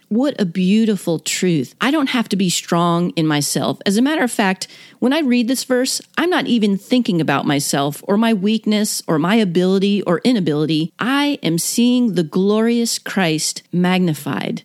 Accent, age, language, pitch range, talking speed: American, 40-59, English, 175-235 Hz, 175 wpm